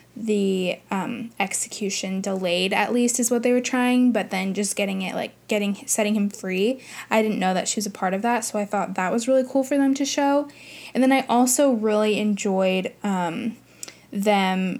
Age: 10-29